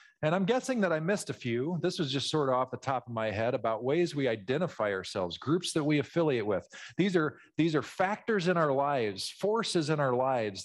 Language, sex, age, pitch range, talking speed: English, male, 50-69, 140-185 Hz, 225 wpm